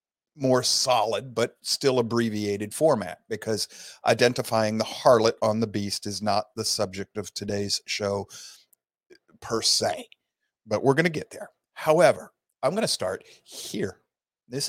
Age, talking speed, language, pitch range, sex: 50-69, 145 wpm, English, 105-140 Hz, male